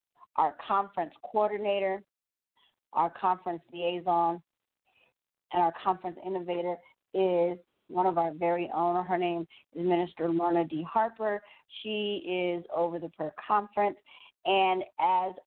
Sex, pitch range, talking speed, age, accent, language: female, 170-195 Hz, 120 wpm, 50-69, American, English